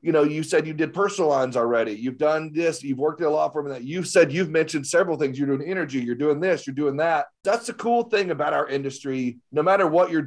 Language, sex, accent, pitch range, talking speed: English, male, American, 140-195 Hz, 270 wpm